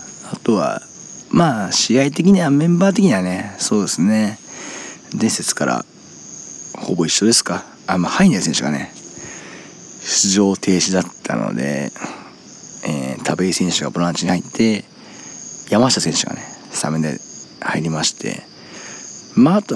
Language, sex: Japanese, male